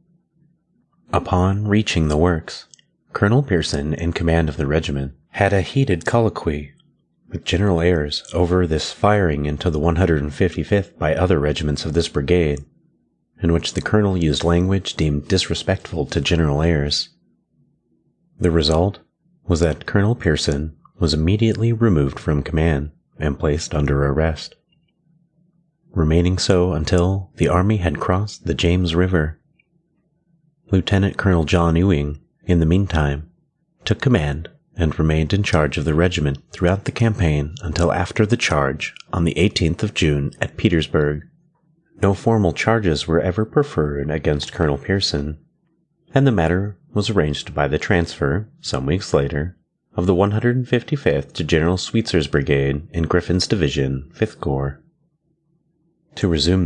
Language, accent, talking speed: English, American, 140 wpm